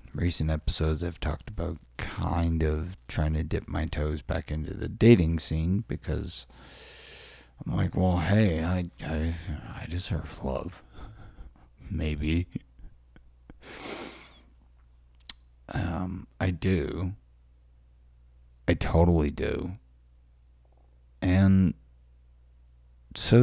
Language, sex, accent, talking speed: English, male, American, 90 wpm